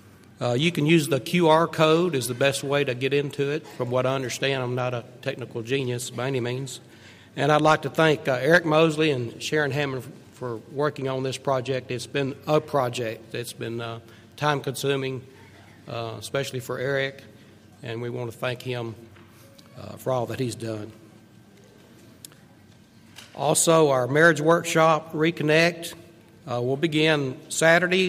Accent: American